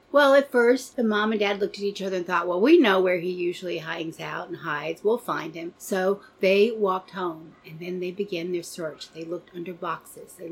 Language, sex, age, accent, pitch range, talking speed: English, female, 40-59, American, 180-215 Hz, 235 wpm